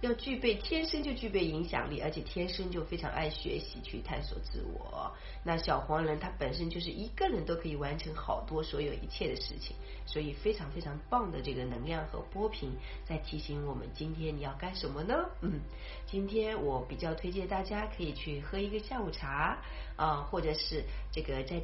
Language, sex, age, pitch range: Chinese, female, 30-49, 155-210 Hz